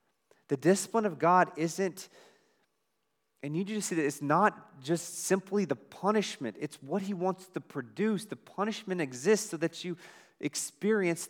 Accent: American